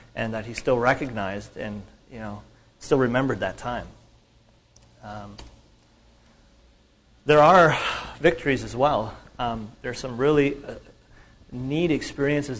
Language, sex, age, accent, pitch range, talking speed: English, male, 30-49, American, 115-145 Hz, 125 wpm